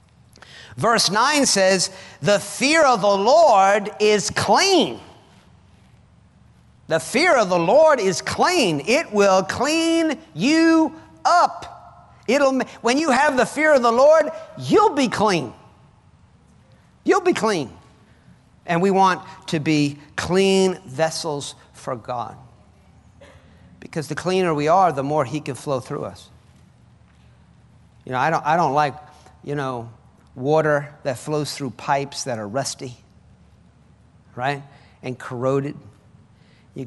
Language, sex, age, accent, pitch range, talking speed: English, male, 50-69, American, 130-185 Hz, 125 wpm